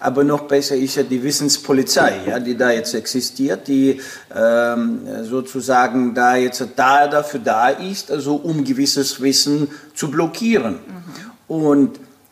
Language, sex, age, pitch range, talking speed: German, male, 50-69, 130-180 Hz, 135 wpm